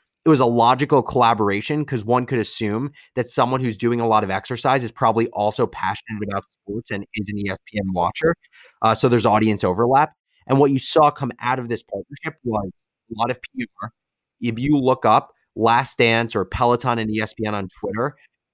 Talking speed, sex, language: 190 wpm, male, English